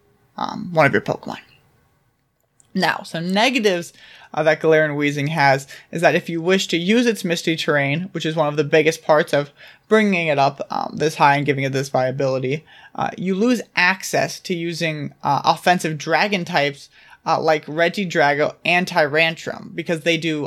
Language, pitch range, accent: English, 150-185 Hz, American